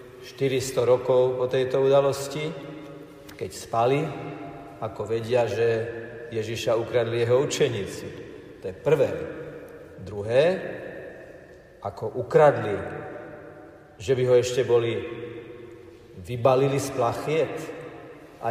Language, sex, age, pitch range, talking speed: Slovak, male, 50-69, 120-150 Hz, 95 wpm